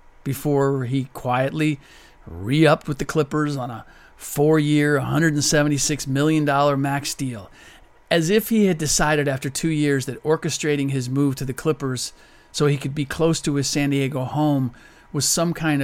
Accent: American